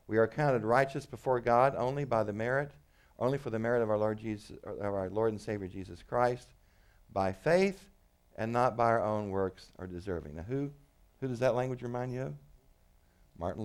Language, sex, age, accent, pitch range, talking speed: English, male, 60-79, American, 90-125 Hz, 200 wpm